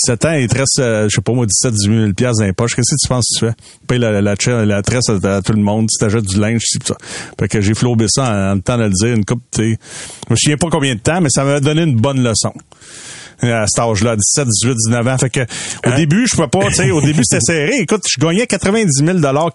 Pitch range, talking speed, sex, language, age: 115-145 Hz, 265 wpm, male, French, 40-59